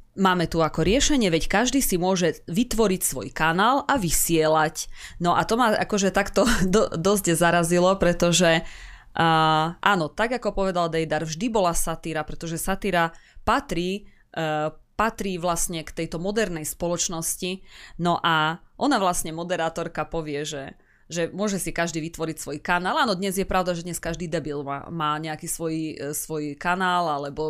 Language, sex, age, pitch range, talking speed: Slovak, female, 20-39, 160-185 Hz, 150 wpm